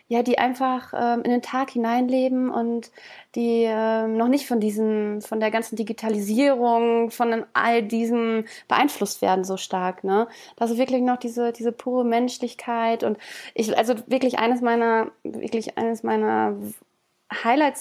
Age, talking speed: 20-39, 150 wpm